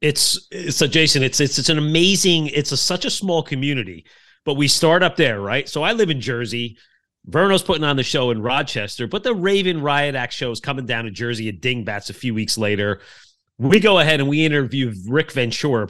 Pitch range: 135-180 Hz